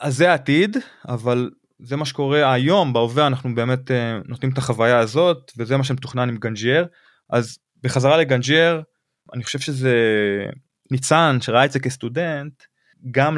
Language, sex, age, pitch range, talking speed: Hebrew, male, 20-39, 115-150 Hz, 145 wpm